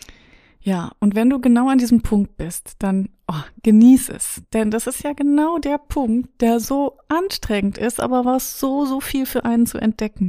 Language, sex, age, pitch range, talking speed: German, female, 30-49, 190-245 Hz, 185 wpm